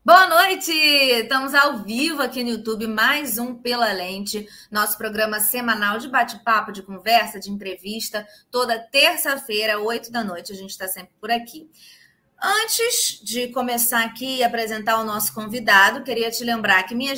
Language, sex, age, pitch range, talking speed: Portuguese, female, 20-39, 200-245 Hz, 160 wpm